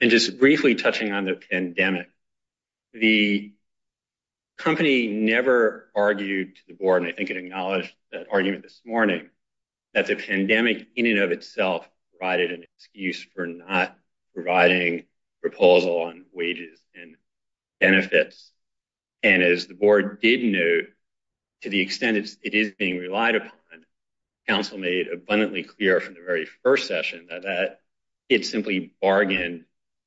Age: 40-59